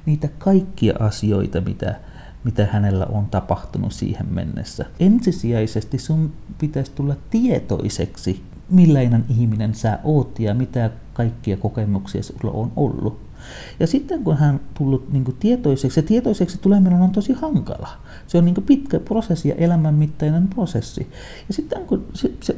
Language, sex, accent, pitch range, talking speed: Finnish, male, native, 115-175 Hz, 145 wpm